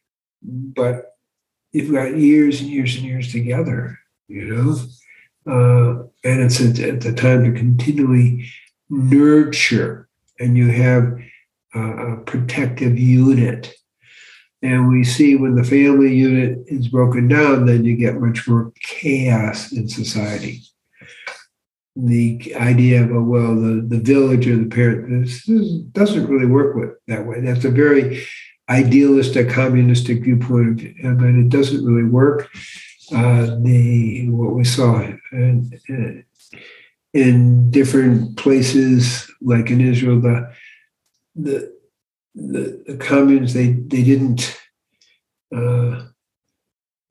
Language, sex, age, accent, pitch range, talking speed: English, male, 60-79, American, 120-135 Hz, 120 wpm